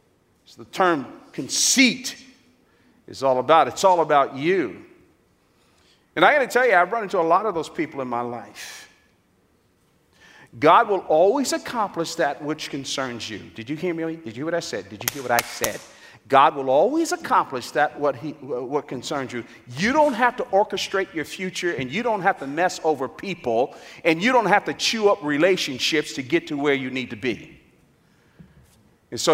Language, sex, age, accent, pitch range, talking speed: English, male, 50-69, American, 145-220 Hz, 190 wpm